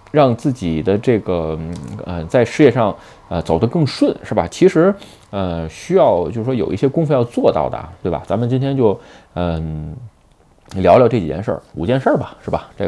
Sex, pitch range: male, 90-135 Hz